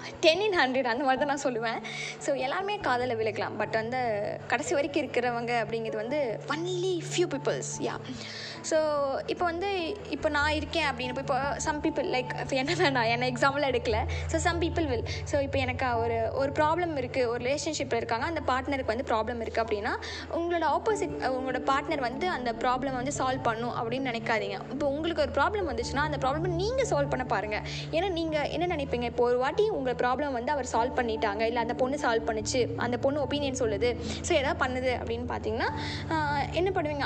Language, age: Tamil, 20-39